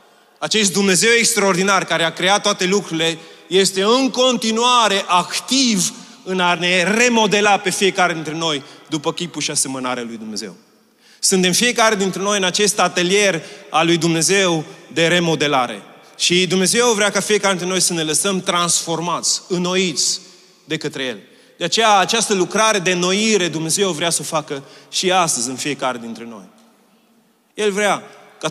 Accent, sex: native, male